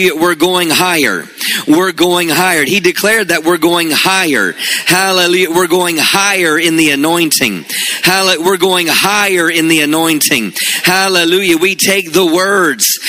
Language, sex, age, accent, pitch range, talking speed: English, male, 40-59, American, 180-215 Hz, 140 wpm